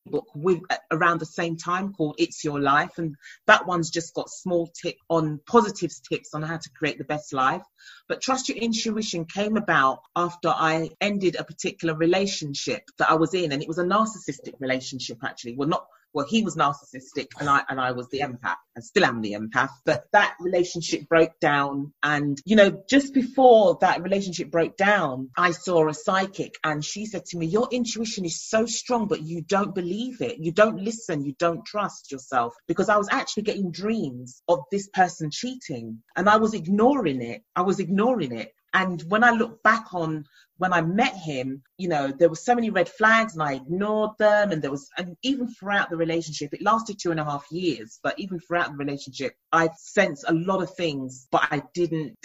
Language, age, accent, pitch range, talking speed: English, 30-49, British, 150-200 Hz, 205 wpm